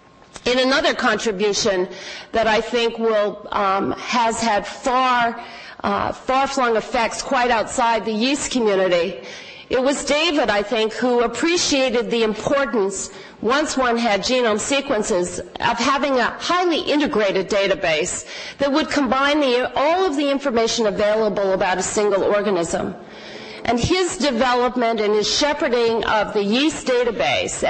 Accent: American